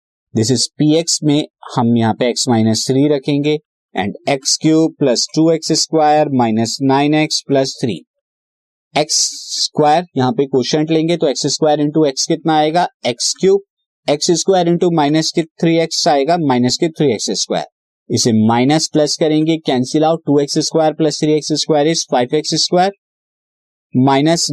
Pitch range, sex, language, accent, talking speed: 130-165 Hz, male, Hindi, native, 125 wpm